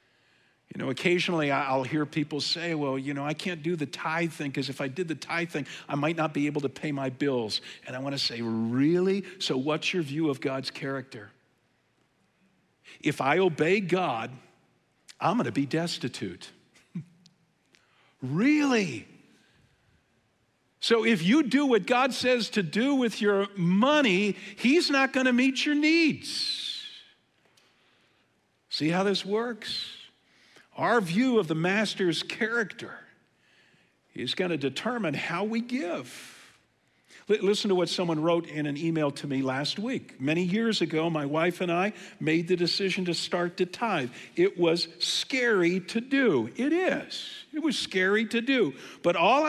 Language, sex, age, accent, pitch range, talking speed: English, male, 50-69, American, 145-215 Hz, 160 wpm